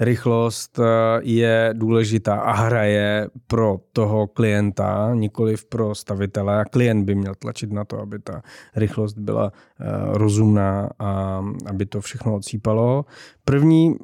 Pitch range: 100-115 Hz